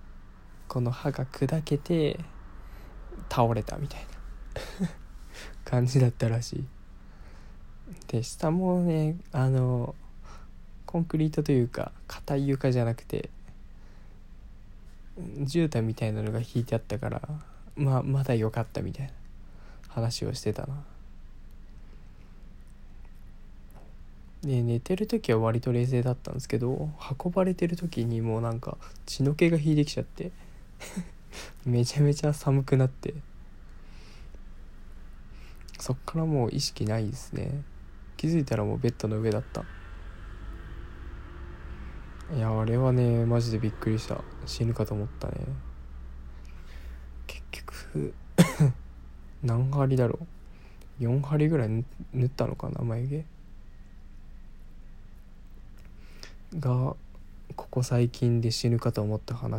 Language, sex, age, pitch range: Japanese, male, 20-39, 95-135 Hz